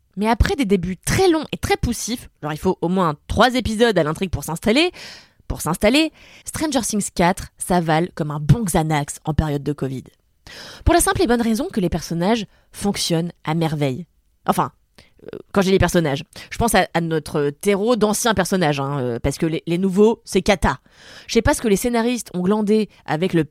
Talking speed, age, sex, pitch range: 205 wpm, 20-39, female, 180-275 Hz